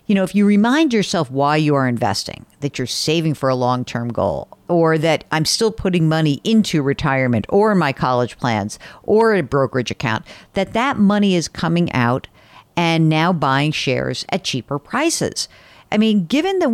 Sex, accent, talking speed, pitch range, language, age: female, American, 180 wpm, 150-225 Hz, English, 50-69